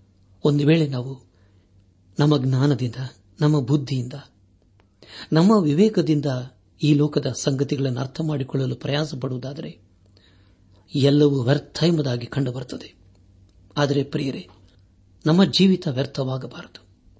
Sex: male